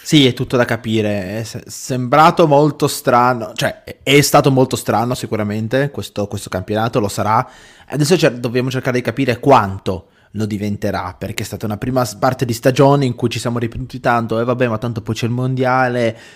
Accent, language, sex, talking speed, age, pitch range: native, Italian, male, 190 wpm, 20-39, 110-130 Hz